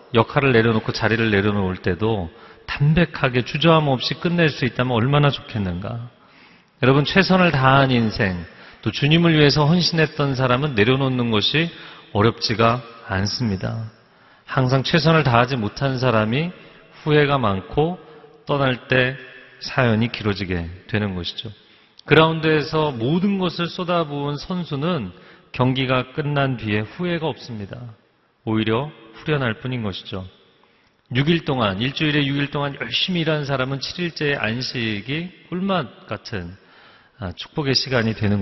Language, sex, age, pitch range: Korean, male, 40-59, 105-150 Hz